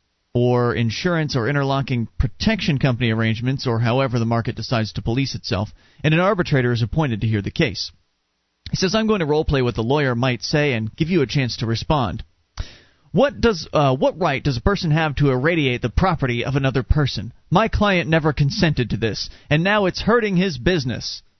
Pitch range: 120-175 Hz